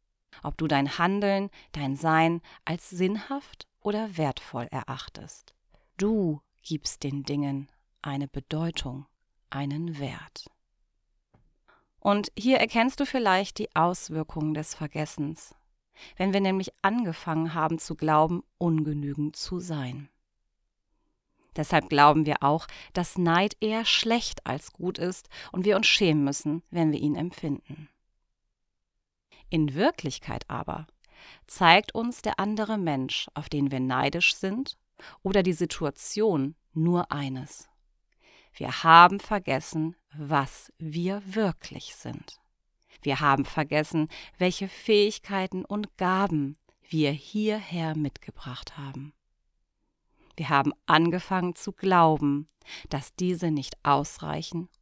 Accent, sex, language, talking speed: German, female, German, 115 wpm